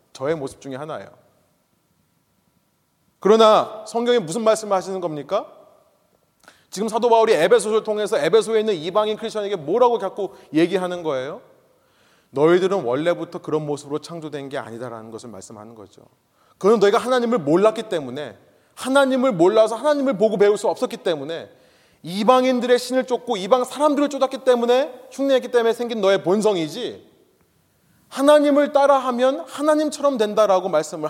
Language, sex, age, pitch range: Korean, male, 30-49, 160-245 Hz